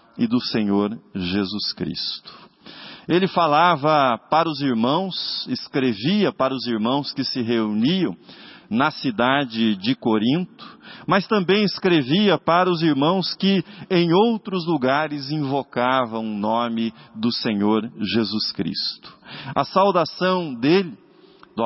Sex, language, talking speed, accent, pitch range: male, Portuguese, 115 wpm, Brazilian, 120-175 Hz